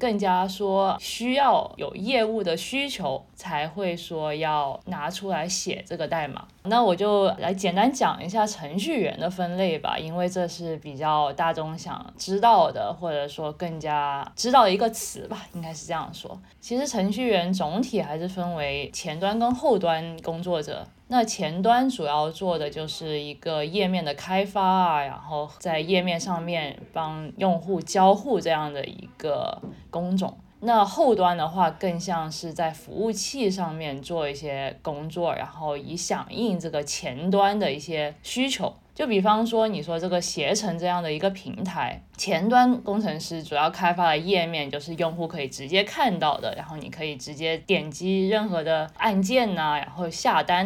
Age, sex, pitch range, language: 20-39, female, 155-200 Hz, Chinese